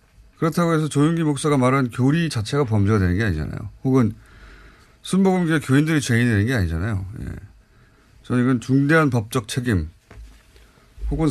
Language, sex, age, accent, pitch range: Korean, male, 30-49, native, 100-145 Hz